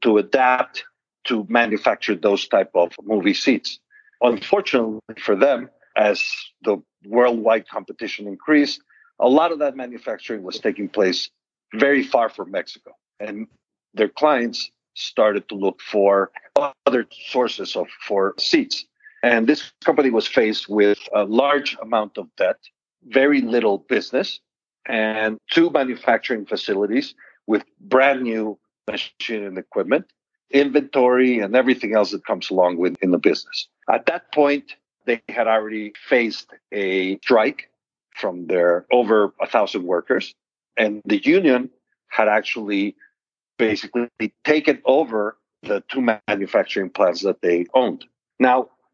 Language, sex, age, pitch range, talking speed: English, male, 50-69, 105-145 Hz, 130 wpm